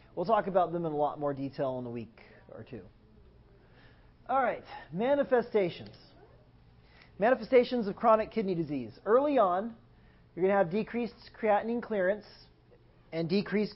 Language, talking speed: English, 145 wpm